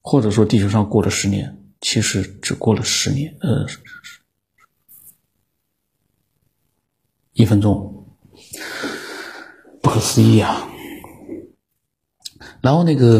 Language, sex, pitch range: Chinese, male, 110-140 Hz